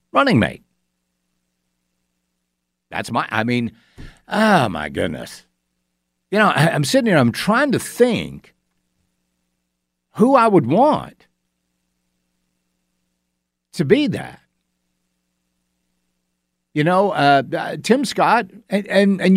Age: 60-79